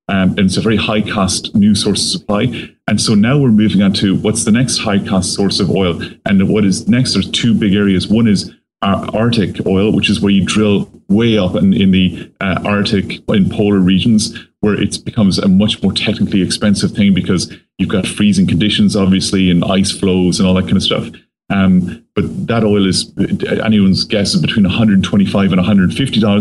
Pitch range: 95-115 Hz